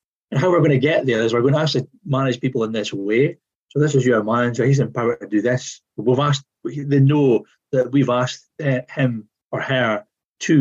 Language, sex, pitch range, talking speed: German, male, 120-160 Hz, 220 wpm